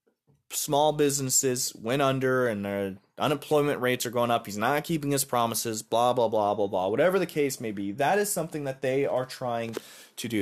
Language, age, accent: English, 20-39, American